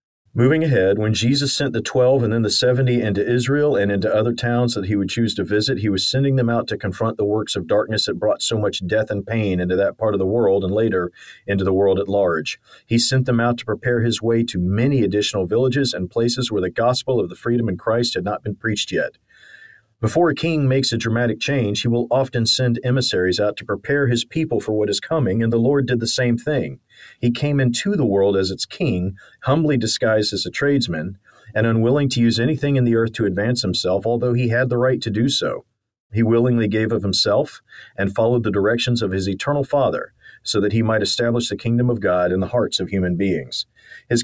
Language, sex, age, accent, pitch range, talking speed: English, male, 40-59, American, 100-125 Hz, 230 wpm